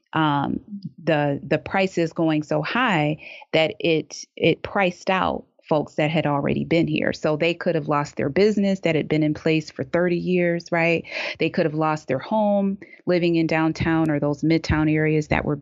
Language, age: English, 30-49